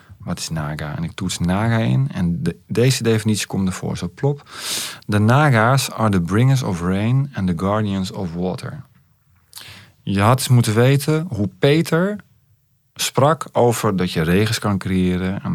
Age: 40-59